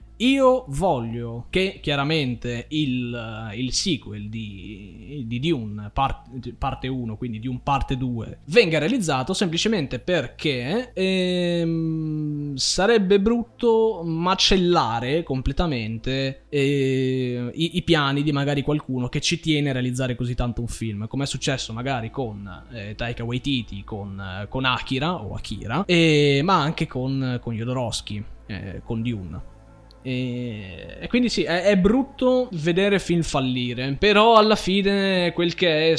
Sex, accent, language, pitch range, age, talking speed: male, native, Italian, 120-160 Hz, 20-39, 135 wpm